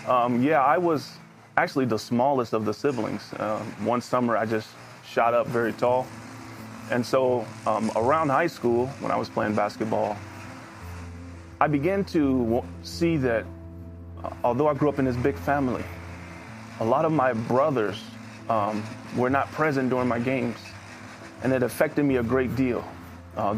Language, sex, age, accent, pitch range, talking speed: English, male, 30-49, American, 105-130 Hz, 165 wpm